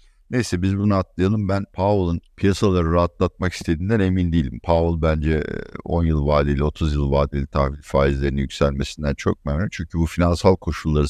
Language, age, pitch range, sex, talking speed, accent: Turkish, 60-79, 75-95 Hz, male, 150 wpm, native